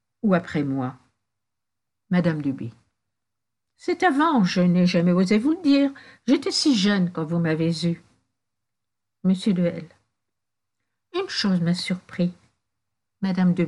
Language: French